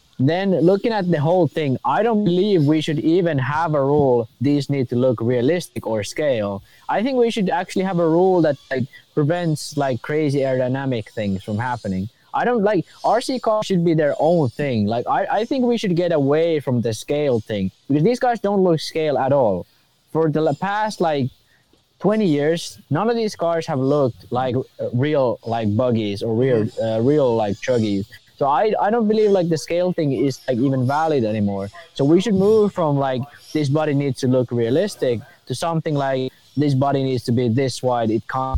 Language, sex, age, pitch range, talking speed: English, male, 20-39, 125-170 Hz, 200 wpm